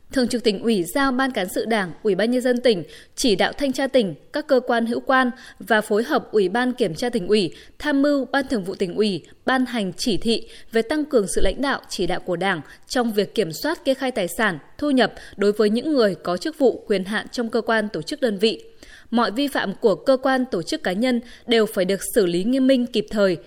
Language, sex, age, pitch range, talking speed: Vietnamese, female, 20-39, 210-265 Hz, 255 wpm